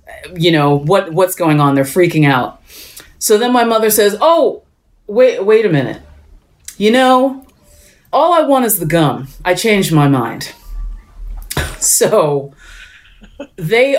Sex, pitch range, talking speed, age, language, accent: female, 150-200 Hz, 140 wpm, 30-49, English, American